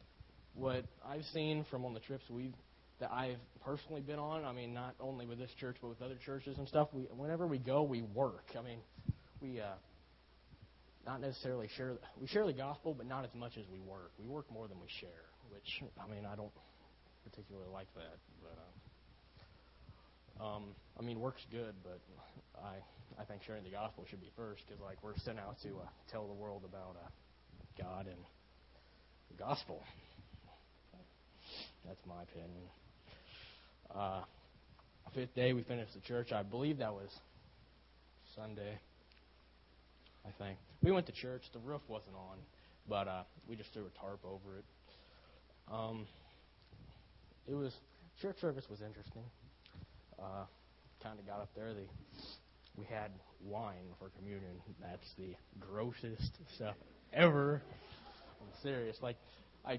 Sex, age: male, 20-39